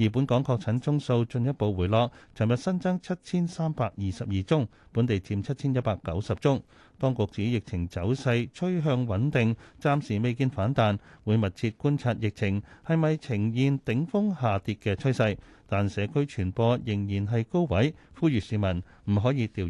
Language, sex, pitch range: Chinese, male, 105-140 Hz